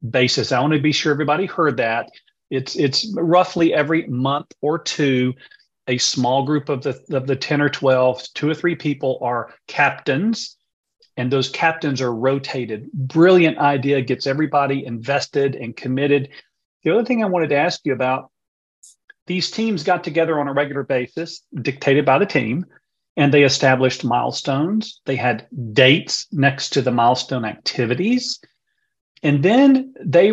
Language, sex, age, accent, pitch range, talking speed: English, male, 40-59, American, 130-170 Hz, 160 wpm